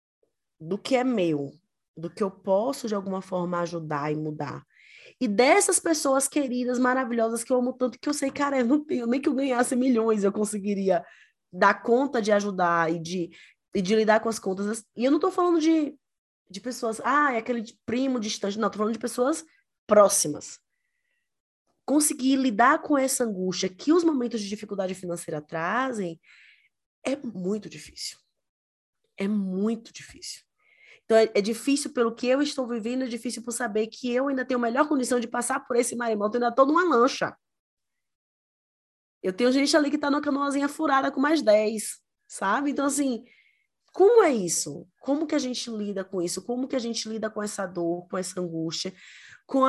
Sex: female